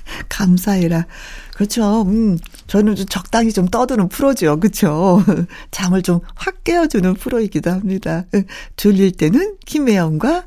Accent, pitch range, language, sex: native, 175-235 Hz, Korean, female